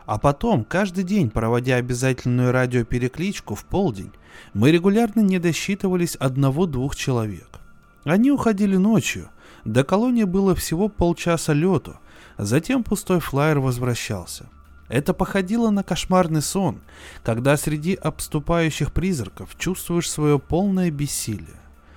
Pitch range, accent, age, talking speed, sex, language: 120-175 Hz, native, 20-39, 110 wpm, male, Russian